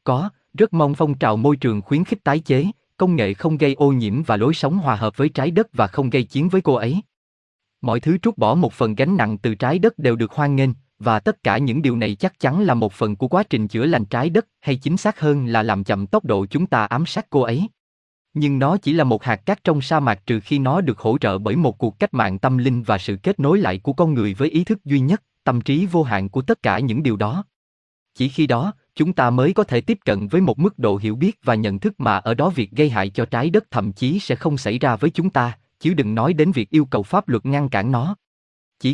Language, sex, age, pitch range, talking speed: Vietnamese, male, 20-39, 115-165 Hz, 270 wpm